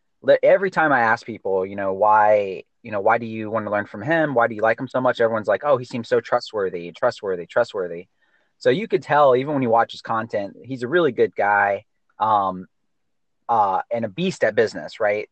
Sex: male